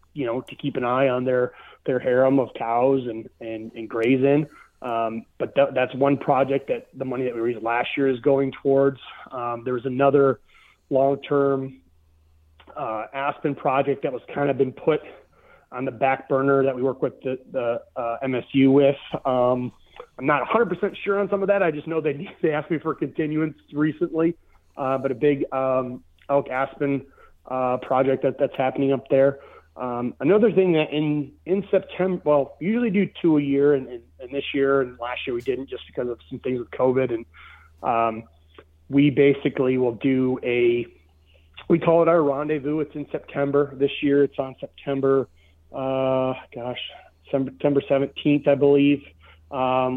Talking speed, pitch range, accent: 185 wpm, 125-145 Hz, American